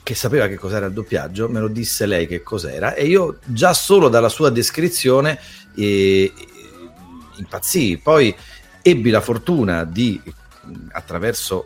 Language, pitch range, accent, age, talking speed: Italian, 105-155 Hz, native, 40-59, 140 wpm